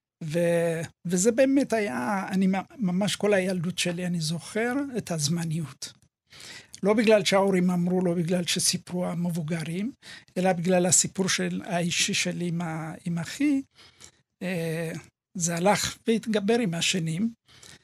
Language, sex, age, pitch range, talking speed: Hebrew, male, 60-79, 165-190 Hz, 115 wpm